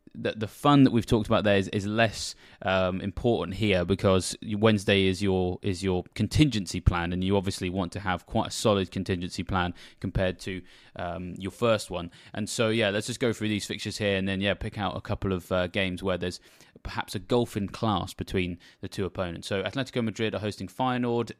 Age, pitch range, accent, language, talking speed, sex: 20-39, 95-115 Hz, British, English, 210 wpm, male